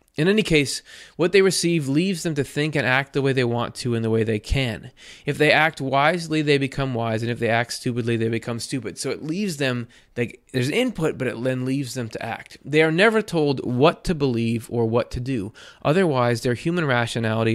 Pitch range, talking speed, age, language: 120-150 Hz, 220 wpm, 20-39, English